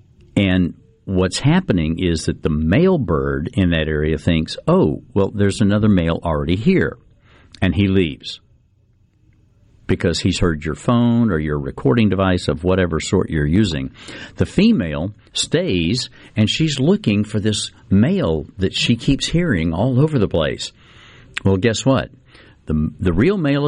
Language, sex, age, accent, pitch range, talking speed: English, male, 60-79, American, 80-115 Hz, 150 wpm